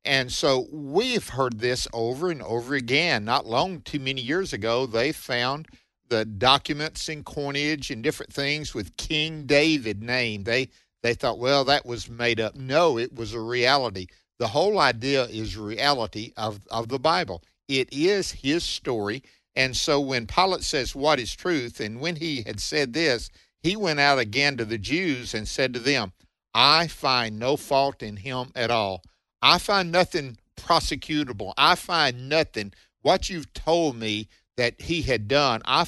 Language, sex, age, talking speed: English, male, 50-69, 170 wpm